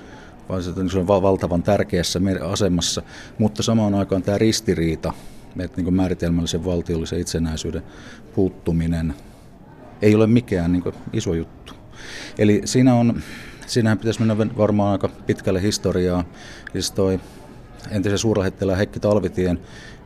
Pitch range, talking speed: 90-105 Hz, 110 wpm